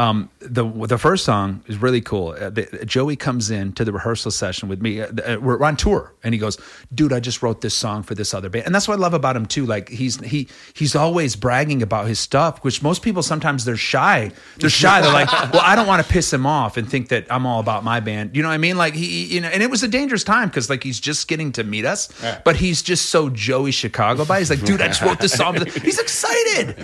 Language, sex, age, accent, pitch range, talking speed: English, male, 30-49, American, 115-175 Hz, 265 wpm